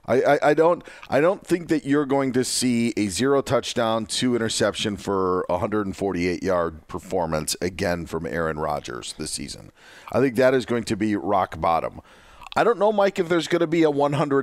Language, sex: English, male